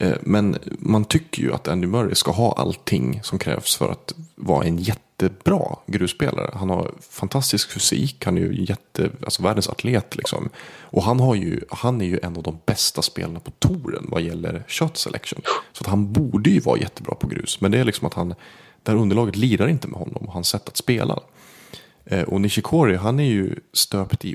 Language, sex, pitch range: Swedish, male, 90-120 Hz